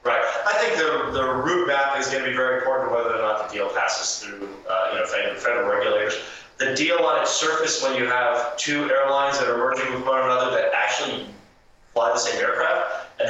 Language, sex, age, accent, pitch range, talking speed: English, male, 30-49, American, 120-150 Hz, 215 wpm